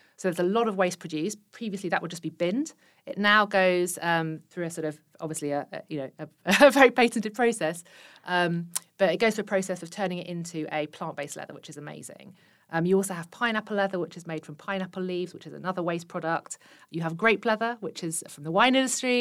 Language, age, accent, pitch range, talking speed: English, 40-59, British, 165-190 Hz, 235 wpm